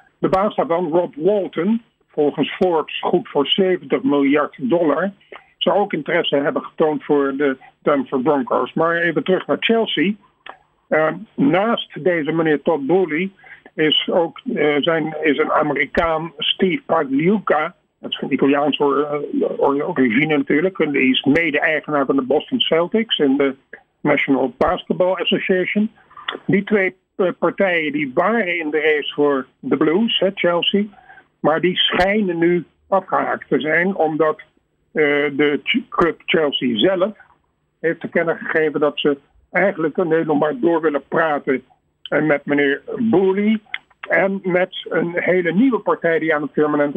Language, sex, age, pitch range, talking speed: Dutch, male, 50-69, 150-195 Hz, 145 wpm